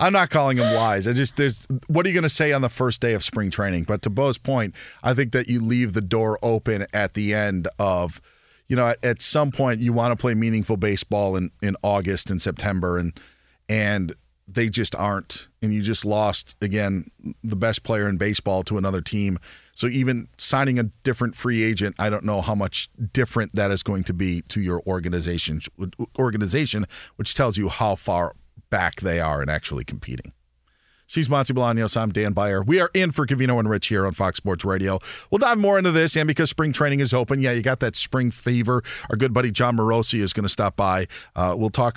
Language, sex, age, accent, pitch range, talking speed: English, male, 40-59, American, 95-125 Hz, 215 wpm